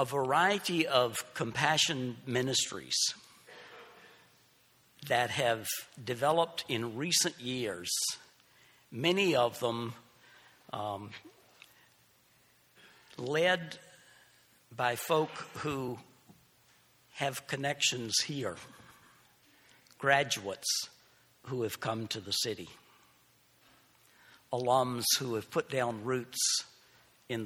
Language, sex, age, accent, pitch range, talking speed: English, male, 60-79, American, 110-130 Hz, 80 wpm